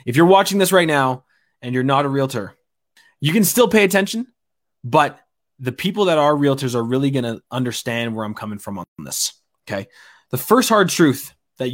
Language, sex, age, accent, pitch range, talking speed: English, male, 20-39, American, 115-165 Hz, 200 wpm